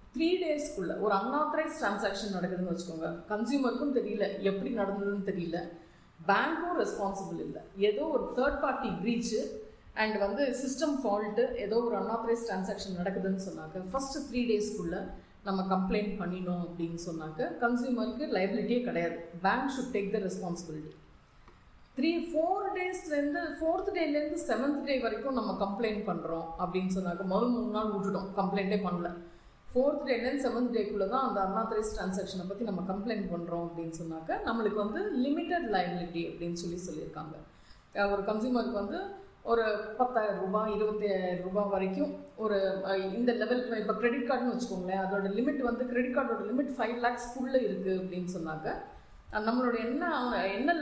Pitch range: 190-245 Hz